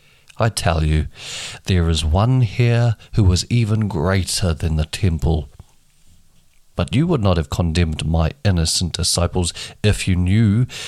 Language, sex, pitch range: English, male, 85-120 Hz